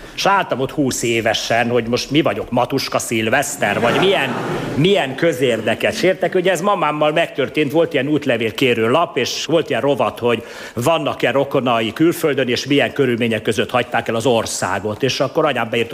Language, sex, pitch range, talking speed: Hungarian, male, 120-170 Hz, 165 wpm